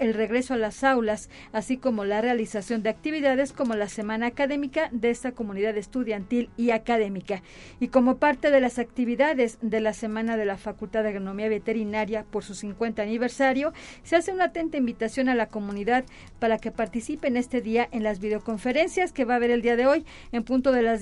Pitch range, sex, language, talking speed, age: 225-265 Hz, female, Spanish, 195 wpm, 40-59